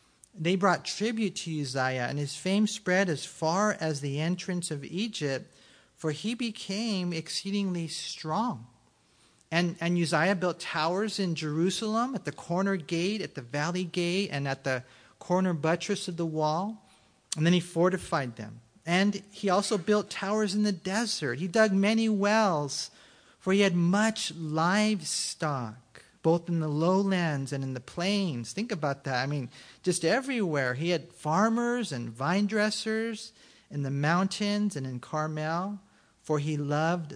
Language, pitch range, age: English, 150-200 Hz, 40-59